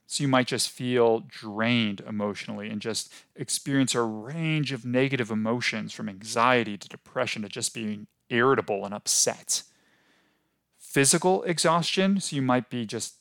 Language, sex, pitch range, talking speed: English, male, 110-140 Hz, 145 wpm